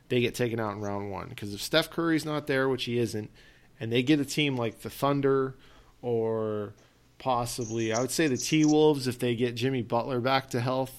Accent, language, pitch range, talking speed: American, English, 115-140 Hz, 215 wpm